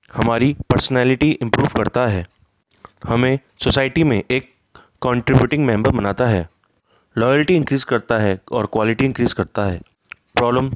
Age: 20-39